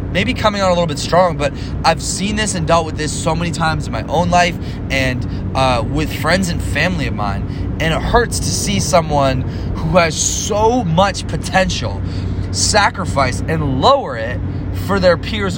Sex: male